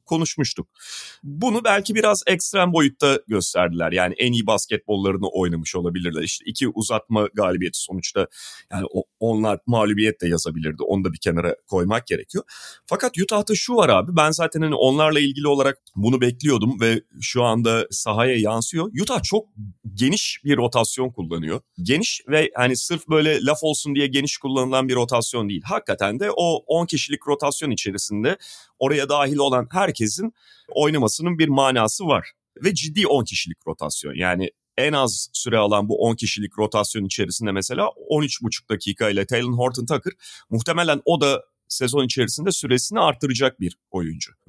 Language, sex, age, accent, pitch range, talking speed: Turkish, male, 30-49, native, 105-155 Hz, 150 wpm